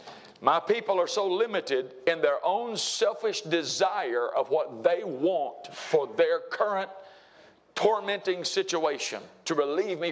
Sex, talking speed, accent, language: male, 130 wpm, American, English